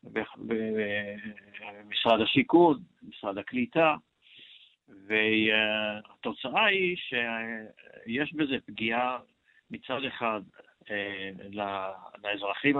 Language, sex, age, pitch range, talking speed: Hebrew, male, 60-79, 110-150 Hz, 55 wpm